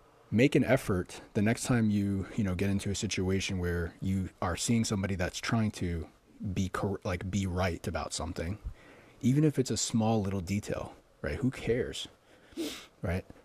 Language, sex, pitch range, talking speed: English, male, 95-115 Hz, 170 wpm